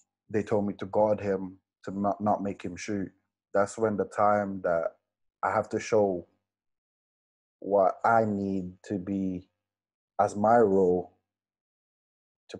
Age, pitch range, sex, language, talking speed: 20-39, 90-105 Hz, male, English, 145 wpm